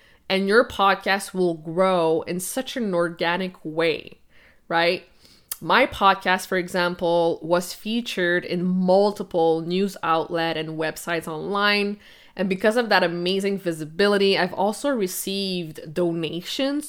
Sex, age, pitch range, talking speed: female, 20-39, 170-205 Hz, 120 wpm